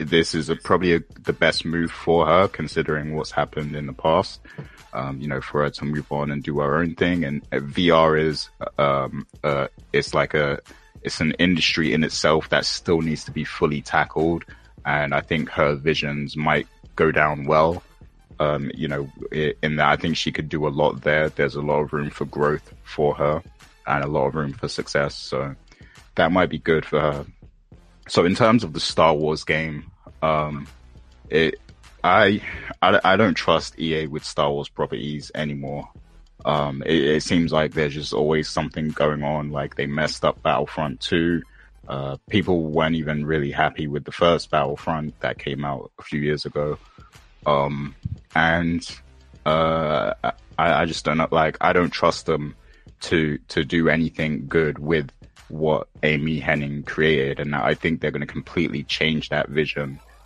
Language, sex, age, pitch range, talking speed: English, male, 20-39, 70-80 Hz, 185 wpm